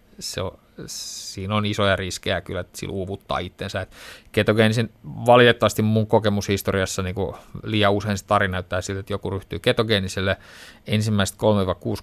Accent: native